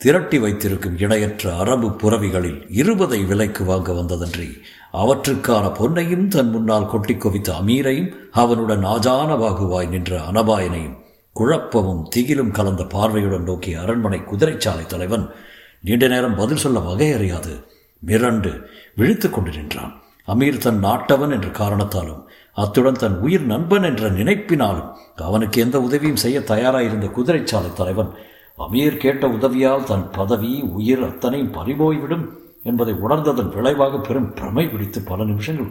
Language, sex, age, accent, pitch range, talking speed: Tamil, male, 60-79, native, 95-130 Hz, 120 wpm